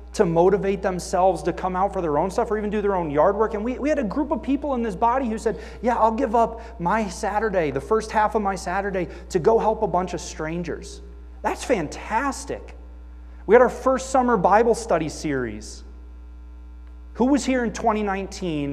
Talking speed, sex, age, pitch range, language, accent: 205 wpm, male, 30-49, 150-210 Hz, English, American